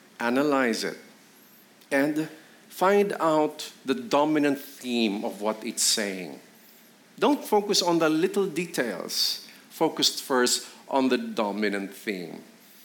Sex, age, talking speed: male, 50-69, 110 wpm